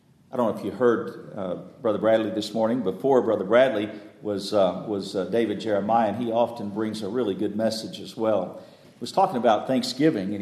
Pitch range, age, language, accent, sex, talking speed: 110-150 Hz, 50-69, English, American, male, 205 wpm